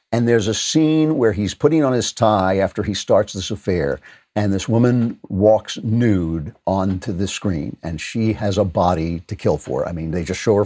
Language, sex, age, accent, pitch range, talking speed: English, male, 50-69, American, 100-130 Hz, 210 wpm